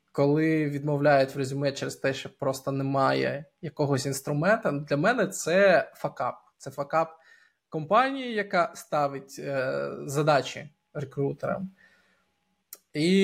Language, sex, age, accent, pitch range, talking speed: Ukrainian, male, 20-39, native, 140-175 Hz, 110 wpm